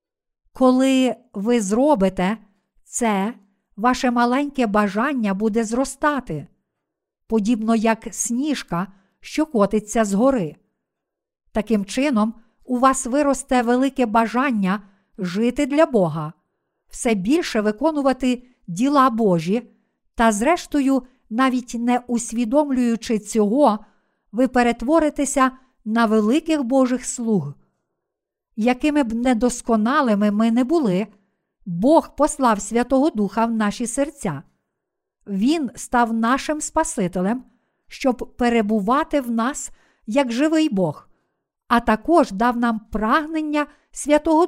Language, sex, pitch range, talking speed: Ukrainian, female, 210-270 Hz, 100 wpm